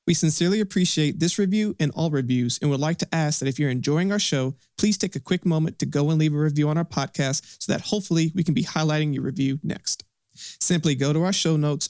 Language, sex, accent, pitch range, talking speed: English, male, American, 135-170 Hz, 245 wpm